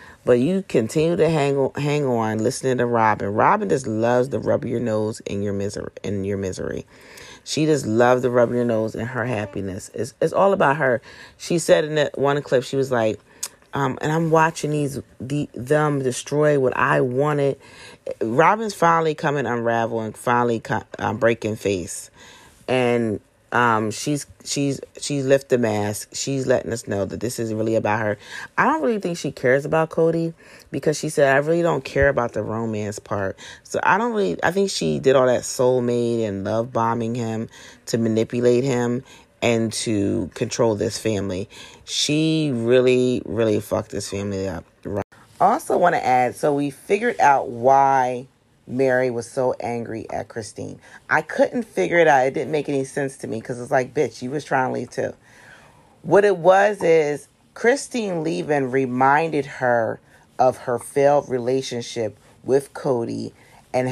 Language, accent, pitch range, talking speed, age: English, American, 115-145 Hz, 175 wpm, 30-49